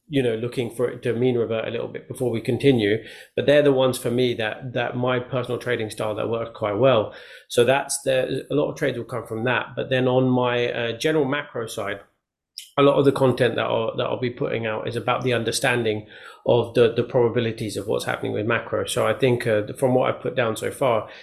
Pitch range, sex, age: 115-130 Hz, male, 30-49